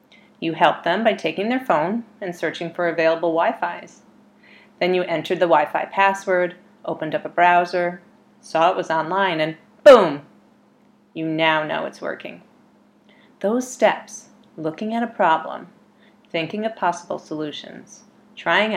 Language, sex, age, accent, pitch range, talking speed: English, female, 30-49, American, 170-235 Hz, 140 wpm